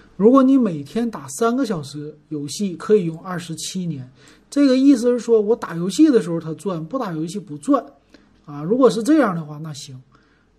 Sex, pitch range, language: male, 155-220 Hz, Chinese